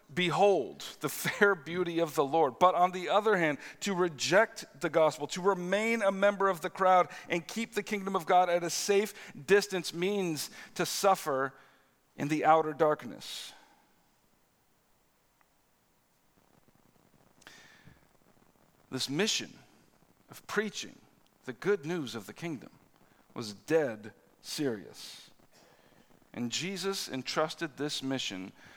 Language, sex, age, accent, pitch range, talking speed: English, male, 50-69, American, 150-200 Hz, 120 wpm